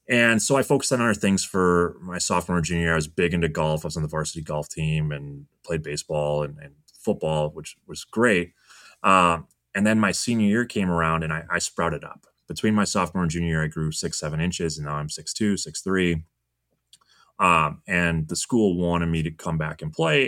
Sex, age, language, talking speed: male, 20-39, English, 225 wpm